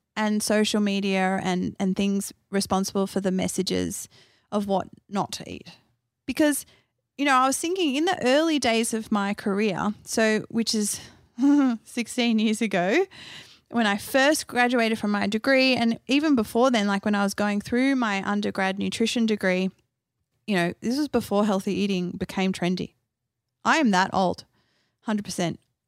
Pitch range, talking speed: 195-255 Hz, 160 wpm